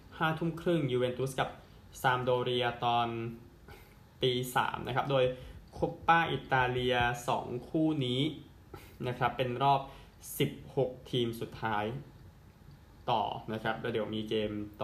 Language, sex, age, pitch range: Thai, male, 20-39, 105-135 Hz